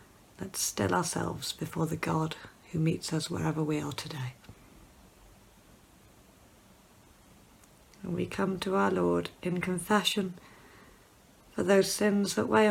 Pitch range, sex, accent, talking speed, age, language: 150-190 Hz, female, British, 125 wpm, 40-59, English